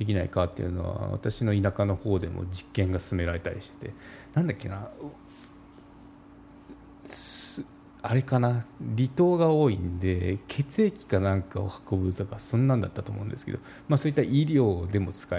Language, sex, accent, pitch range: Japanese, male, native, 95-130 Hz